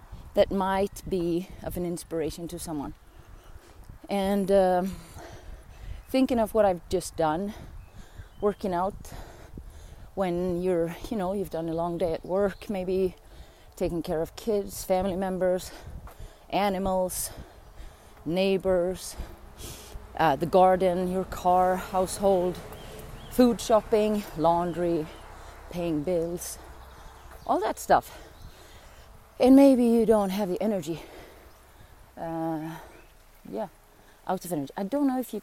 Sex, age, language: female, 30-49, English